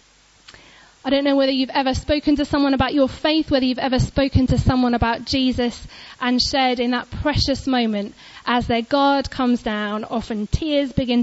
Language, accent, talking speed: English, British, 180 wpm